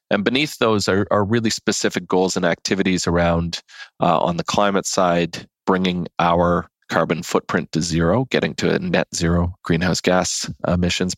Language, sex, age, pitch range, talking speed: English, male, 40-59, 85-100 Hz, 160 wpm